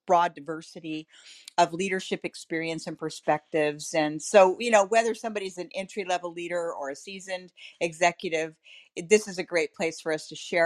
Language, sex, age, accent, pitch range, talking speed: English, female, 50-69, American, 160-195 Hz, 170 wpm